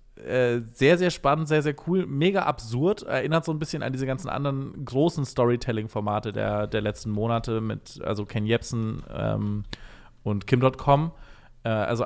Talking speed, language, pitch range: 150 wpm, German, 120-150 Hz